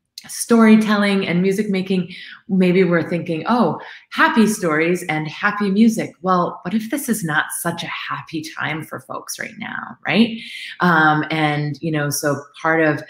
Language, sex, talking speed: English, female, 160 wpm